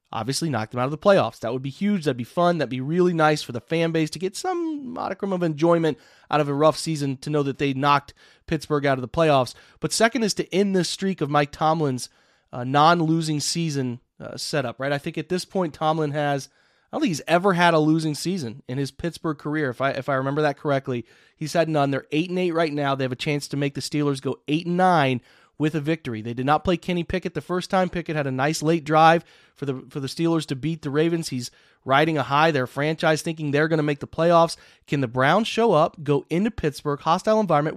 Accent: American